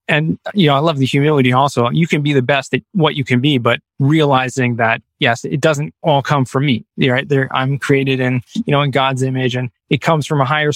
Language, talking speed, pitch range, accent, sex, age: English, 250 wpm, 130-160 Hz, American, male, 20-39